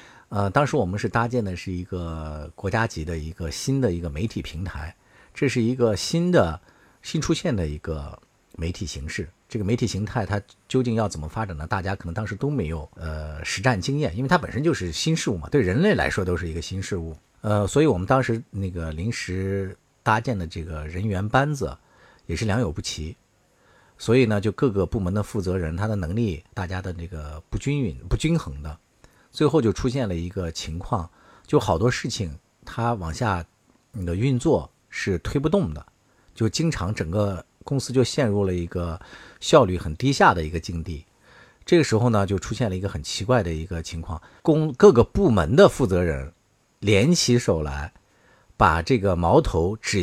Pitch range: 85-125 Hz